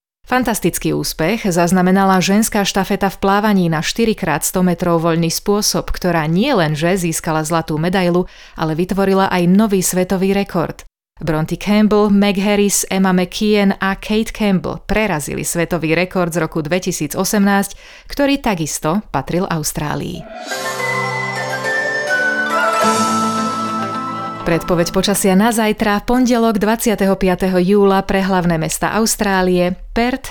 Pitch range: 175-210 Hz